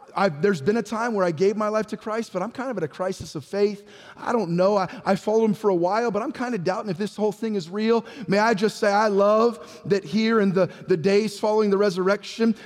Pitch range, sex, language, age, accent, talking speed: 190-245 Hz, male, English, 30-49, American, 265 wpm